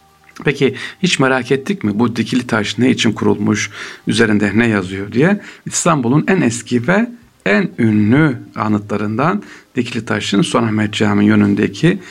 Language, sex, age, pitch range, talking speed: Turkish, male, 60-79, 105-125 Hz, 140 wpm